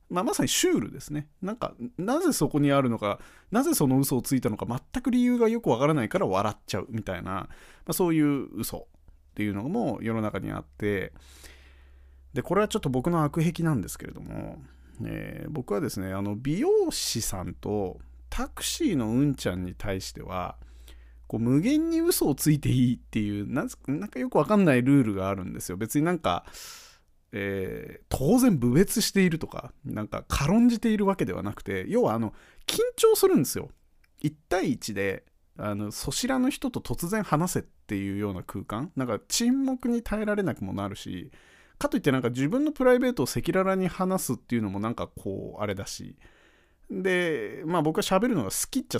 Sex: male